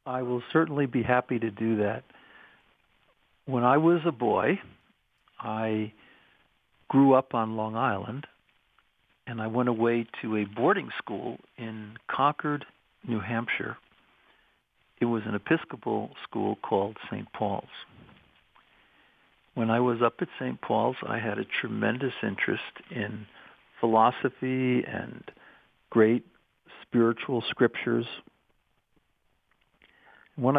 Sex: male